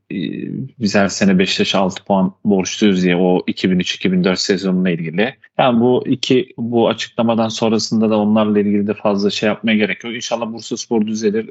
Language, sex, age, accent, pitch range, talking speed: Turkish, male, 40-59, native, 100-110 Hz, 155 wpm